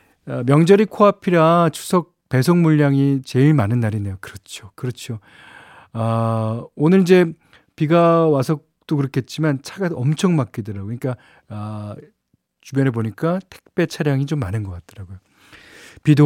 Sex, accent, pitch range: male, native, 115-160 Hz